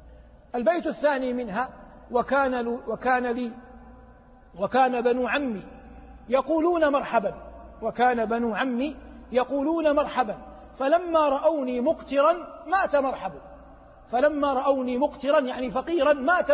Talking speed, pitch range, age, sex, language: 100 wpm, 250-300 Hz, 50-69, male, Arabic